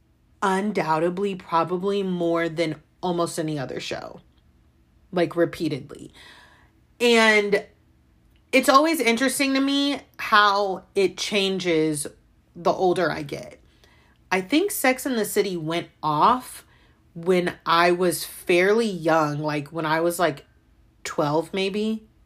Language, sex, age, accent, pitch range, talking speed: English, female, 30-49, American, 160-210 Hz, 115 wpm